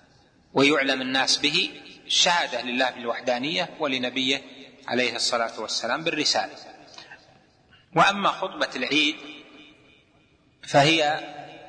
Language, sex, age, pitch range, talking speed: Arabic, male, 30-49, 130-150 Hz, 75 wpm